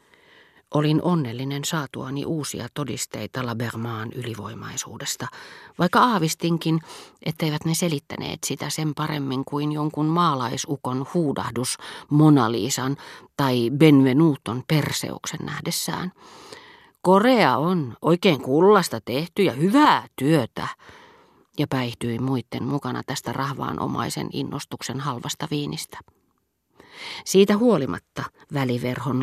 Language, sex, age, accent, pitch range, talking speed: Finnish, female, 40-59, native, 130-170 Hz, 95 wpm